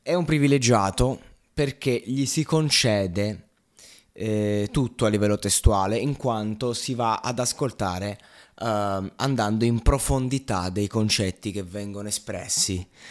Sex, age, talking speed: male, 20-39, 125 wpm